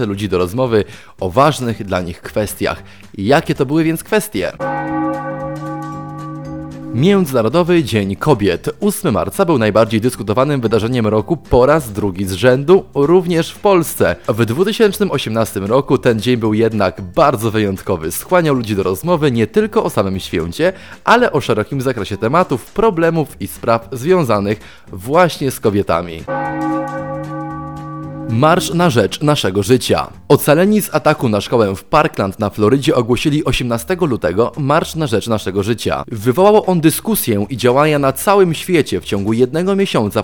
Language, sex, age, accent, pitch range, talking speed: Polish, male, 30-49, native, 110-165 Hz, 140 wpm